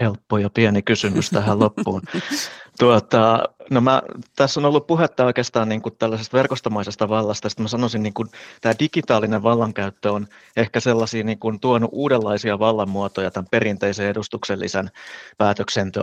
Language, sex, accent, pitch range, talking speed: Finnish, male, native, 100-115 Hz, 140 wpm